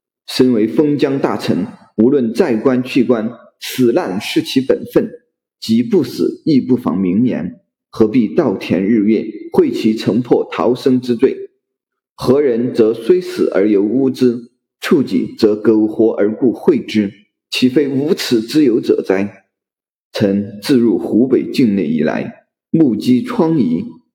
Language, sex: Chinese, male